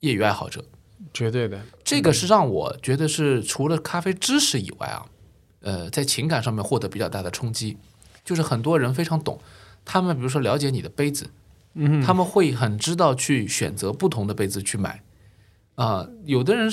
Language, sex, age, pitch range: Chinese, male, 20-39, 110-155 Hz